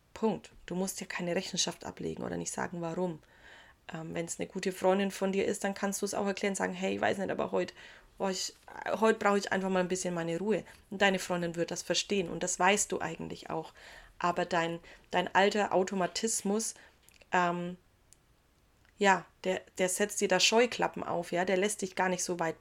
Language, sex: German, female